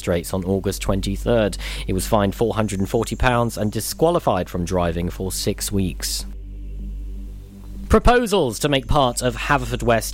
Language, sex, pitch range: English, male, 100-140 Hz